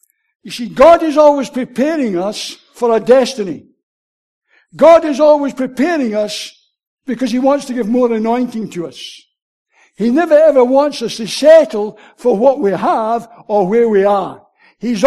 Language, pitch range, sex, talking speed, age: English, 220-290 Hz, male, 160 wpm, 60-79